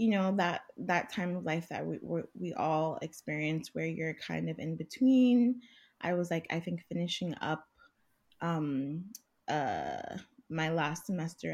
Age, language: 20-39, English